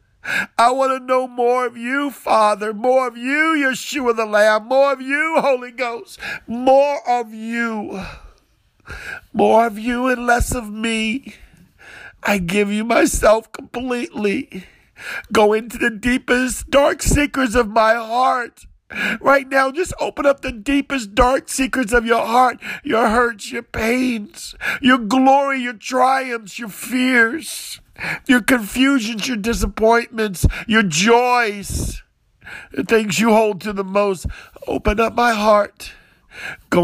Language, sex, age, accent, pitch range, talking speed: English, male, 50-69, American, 195-255 Hz, 135 wpm